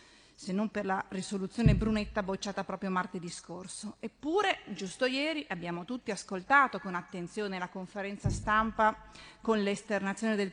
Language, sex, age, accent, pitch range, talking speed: Italian, female, 30-49, native, 185-230 Hz, 135 wpm